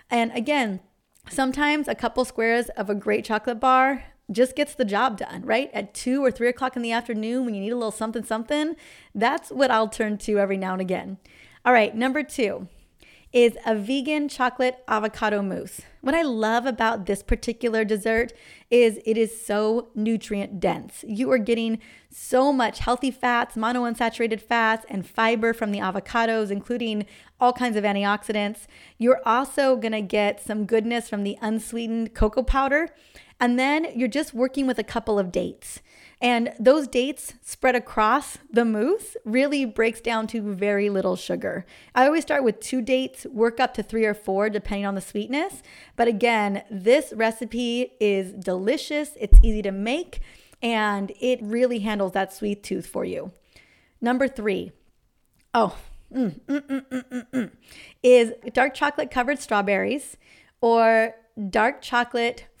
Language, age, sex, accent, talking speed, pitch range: English, 30-49, female, American, 160 wpm, 215-255 Hz